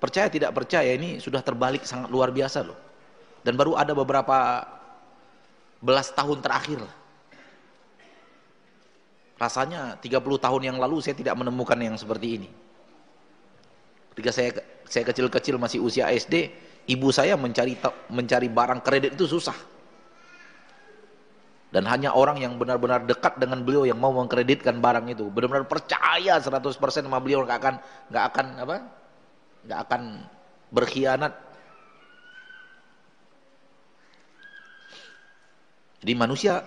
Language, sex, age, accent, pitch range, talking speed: Indonesian, male, 30-49, native, 125-175 Hz, 115 wpm